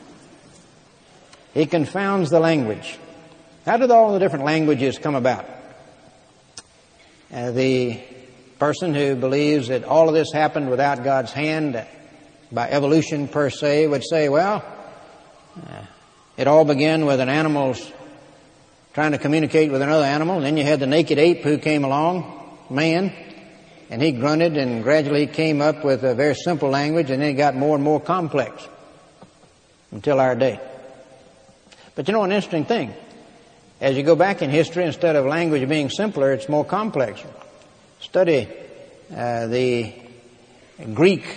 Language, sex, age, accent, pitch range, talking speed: English, male, 60-79, American, 130-160 Hz, 150 wpm